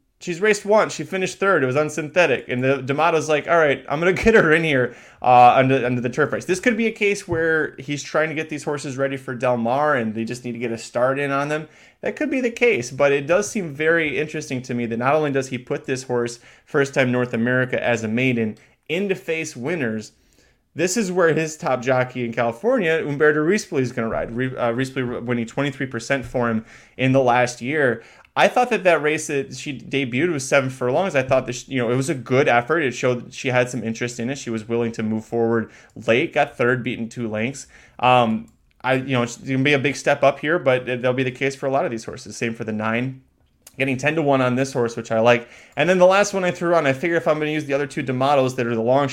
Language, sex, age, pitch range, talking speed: English, male, 20-39, 120-155 Hz, 255 wpm